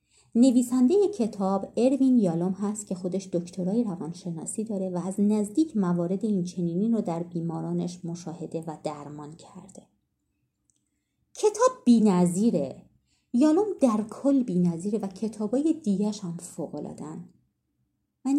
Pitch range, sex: 180-250 Hz, female